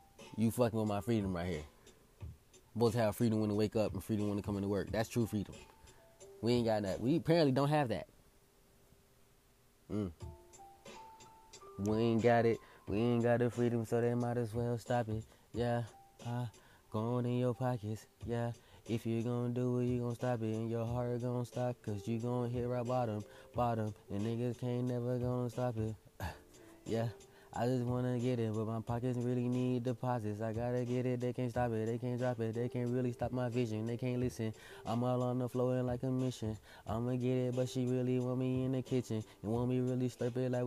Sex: male